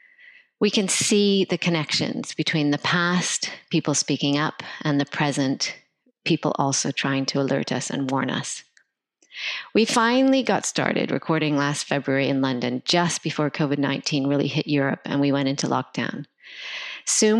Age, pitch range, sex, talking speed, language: 40-59, 145-180 Hz, female, 150 wpm, English